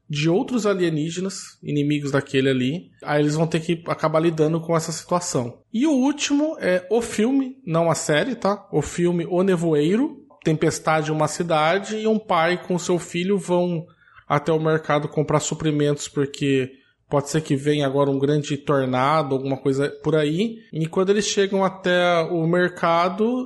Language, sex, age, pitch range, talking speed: Portuguese, male, 20-39, 150-195 Hz, 170 wpm